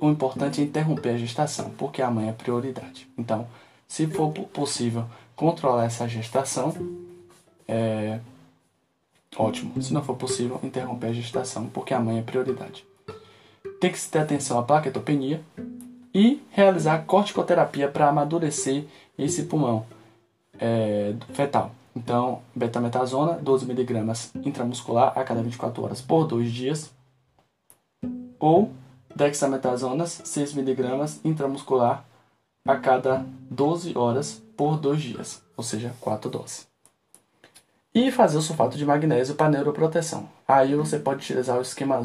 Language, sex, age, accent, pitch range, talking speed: Portuguese, male, 10-29, Brazilian, 120-150 Hz, 125 wpm